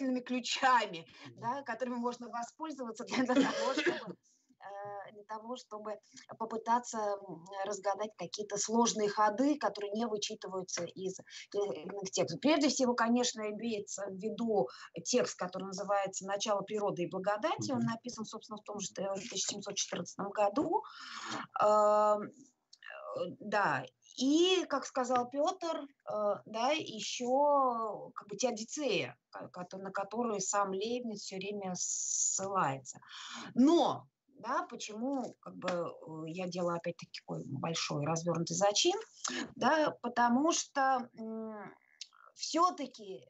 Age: 20-39